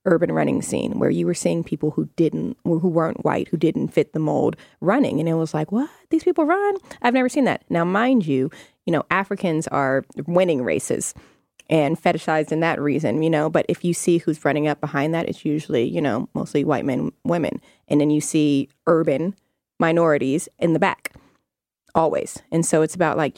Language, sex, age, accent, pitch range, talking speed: English, female, 20-39, American, 145-170 Hz, 205 wpm